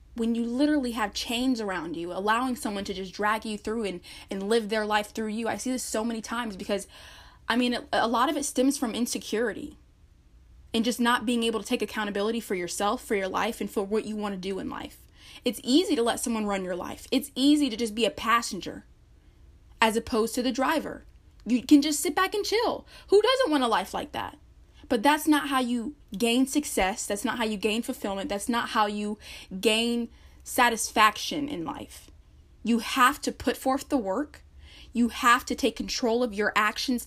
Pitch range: 210-255 Hz